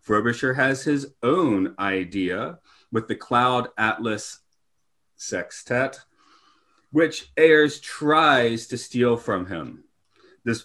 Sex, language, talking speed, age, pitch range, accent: male, English, 100 wpm, 30-49, 110-130 Hz, American